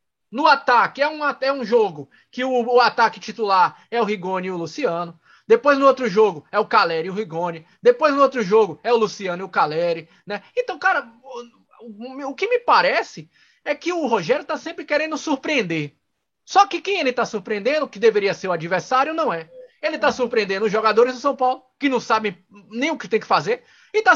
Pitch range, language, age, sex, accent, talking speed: 195-280 Hz, Portuguese, 20-39, male, Brazilian, 215 wpm